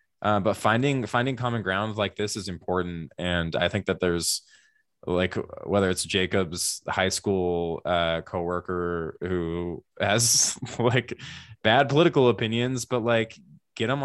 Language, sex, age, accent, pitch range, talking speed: English, male, 20-39, American, 85-105 Hz, 140 wpm